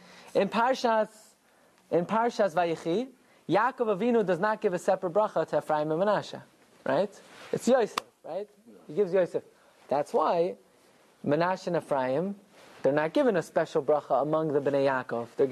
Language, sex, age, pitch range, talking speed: English, male, 20-39, 175-250 Hz, 155 wpm